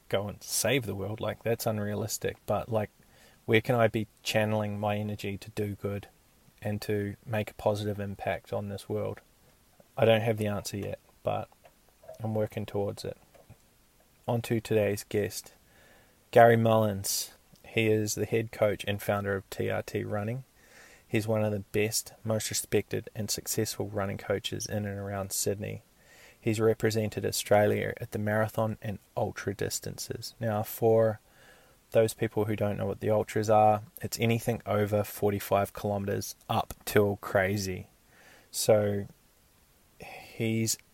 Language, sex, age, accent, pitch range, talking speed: English, male, 20-39, Australian, 100-110 Hz, 150 wpm